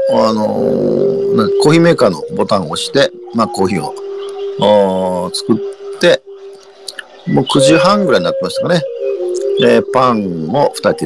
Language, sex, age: Japanese, male, 50-69